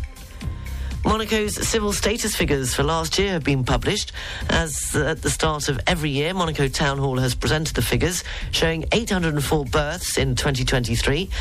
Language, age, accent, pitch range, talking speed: English, 40-59, British, 125-165 Hz, 155 wpm